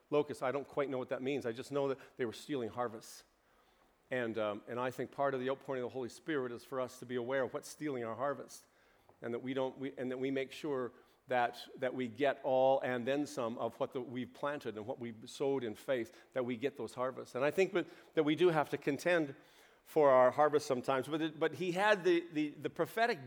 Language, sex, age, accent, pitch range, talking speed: English, male, 40-59, American, 135-165 Hz, 250 wpm